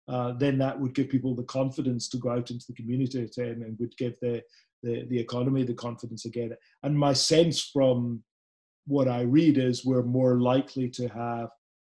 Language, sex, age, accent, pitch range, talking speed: English, male, 40-59, British, 120-135 Hz, 180 wpm